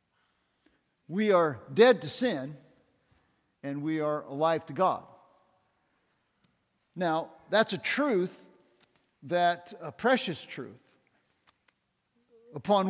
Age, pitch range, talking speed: 50-69, 170-225 Hz, 95 wpm